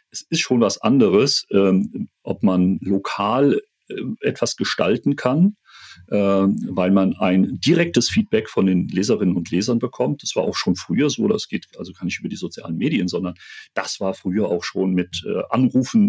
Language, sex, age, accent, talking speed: German, male, 40-59, German, 185 wpm